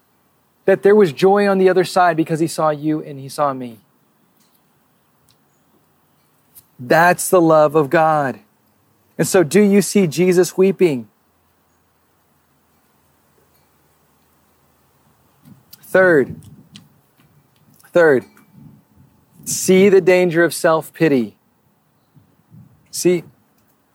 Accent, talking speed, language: American, 90 wpm, English